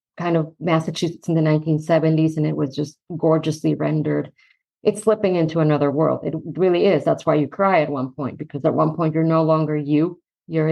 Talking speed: 200 wpm